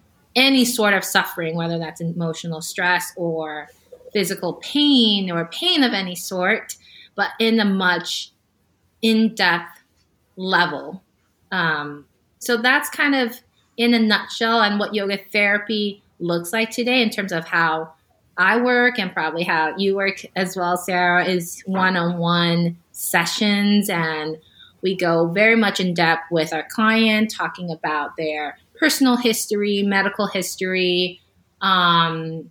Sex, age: female, 20-39